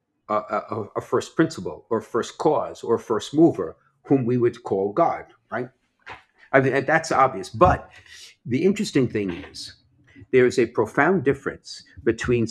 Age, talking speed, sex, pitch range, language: 50-69, 155 wpm, male, 105-140 Hz, English